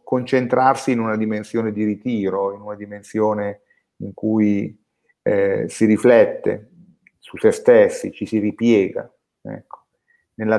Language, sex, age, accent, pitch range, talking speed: Italian, male, 40-59, native, 100-125 Hz, 120 wpm